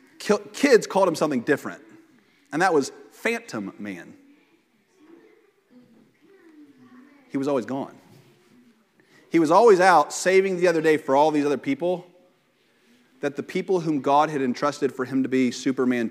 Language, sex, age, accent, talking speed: English, male, 30-49, American, 145 wpm